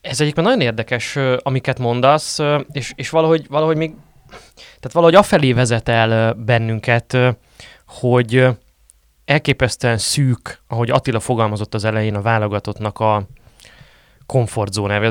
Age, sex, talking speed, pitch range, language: 20-39, male, 115 wpm, 105-130 Hz, Hungarian